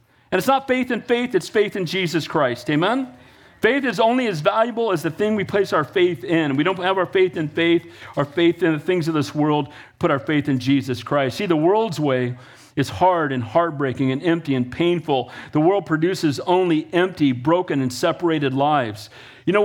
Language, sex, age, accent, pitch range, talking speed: English, male, 50-69, American, 140-180 Hz, 210 wpm